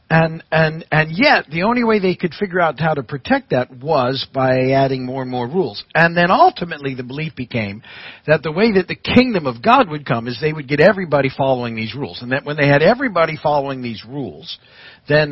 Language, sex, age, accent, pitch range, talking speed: English, male, 50-69, American, 130-170 Hz, 220 wpm